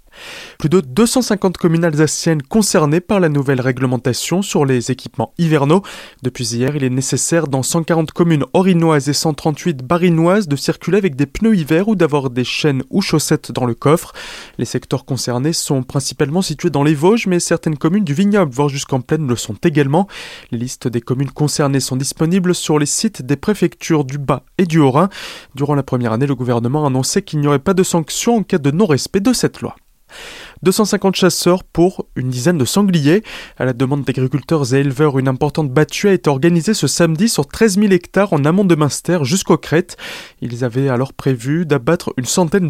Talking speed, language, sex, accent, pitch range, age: 195 wpm, French, male, French, 135-185 Hz, 20-39